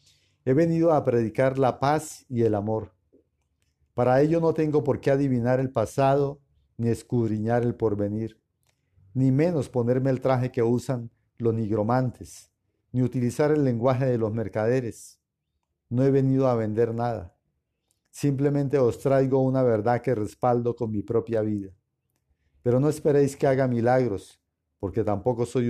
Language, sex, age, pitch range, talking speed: Spanish, male, 50-69, 105-130 Hz, 150 wpm